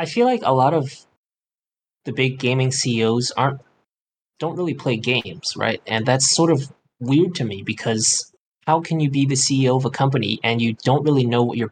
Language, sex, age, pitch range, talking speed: English, male, 20-39, 110-130 Hz, 205 wpm